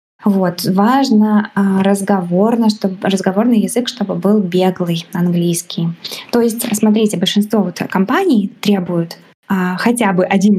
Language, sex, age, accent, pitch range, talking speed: Russian, female, 20-39, native, 185-215 Hz, 120 wpm